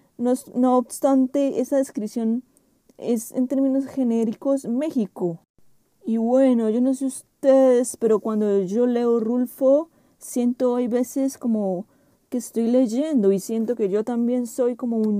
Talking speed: 140 wpm